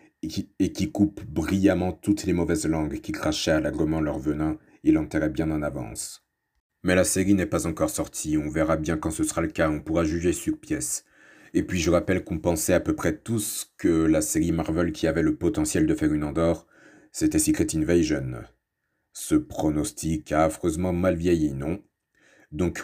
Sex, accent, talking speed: male, French, 195 wpm